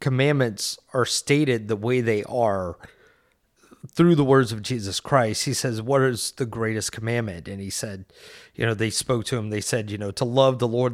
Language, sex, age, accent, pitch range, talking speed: English, male, 30-49, American, 115-165 Hz, 205 wpm